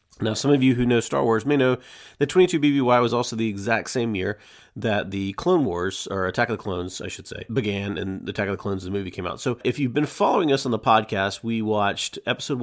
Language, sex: English, male